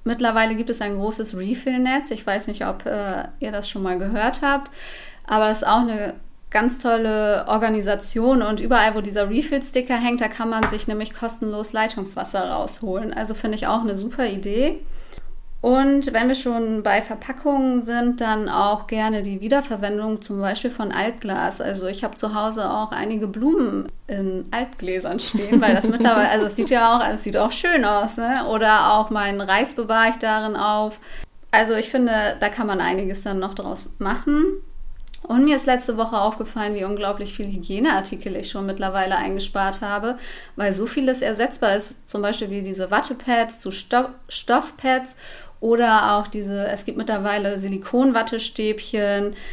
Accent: German